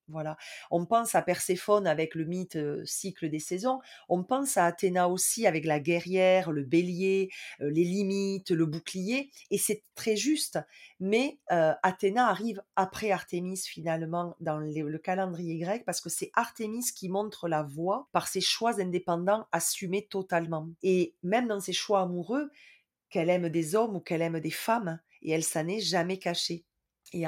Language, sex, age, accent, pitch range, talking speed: French, female, 30-49, French, 165-200 Hz, 170 wpm